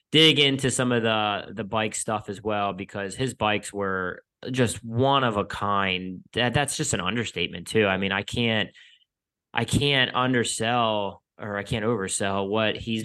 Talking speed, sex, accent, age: 175 wpm, male, American, 20-39